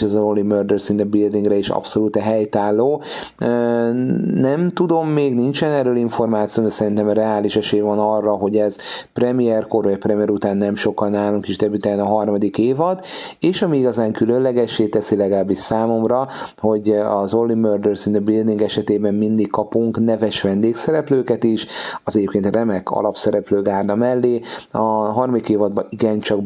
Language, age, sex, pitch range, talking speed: Hungarian, 30-49, male, 100-115 Hz, 150 wpm